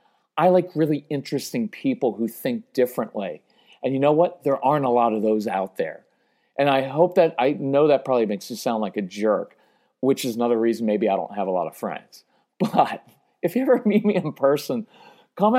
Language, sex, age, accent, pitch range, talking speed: English, male, 40-59, American, 125-190 Hz, 210 wpm